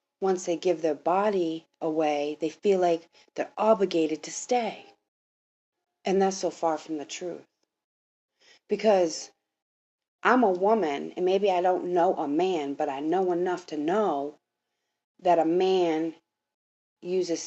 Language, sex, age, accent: English, female, 40-59, American